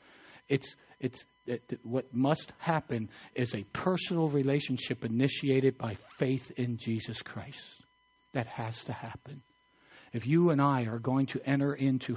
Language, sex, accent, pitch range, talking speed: English, male, American, 120-155 Hz, 140 wpm